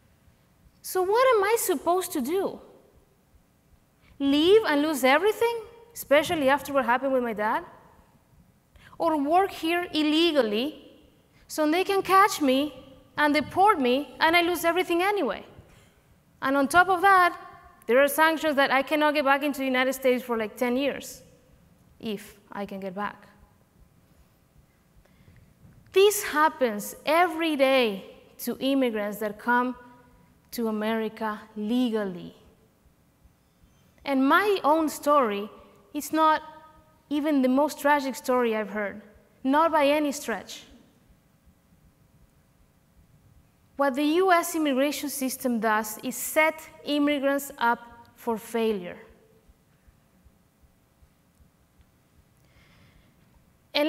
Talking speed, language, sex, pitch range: 115 wpm, English, female, 235-315 Hz